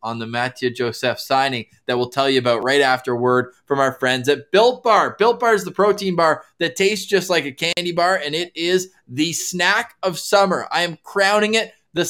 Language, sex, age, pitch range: English, male, 20-39, 140-190 Hz